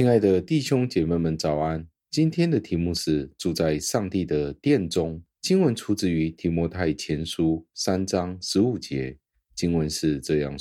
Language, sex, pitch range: Chinese, male, 75-95 Hz